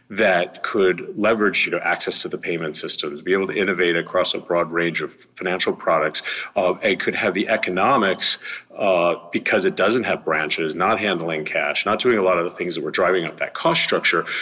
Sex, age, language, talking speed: male, 40-59, English, 210 wpm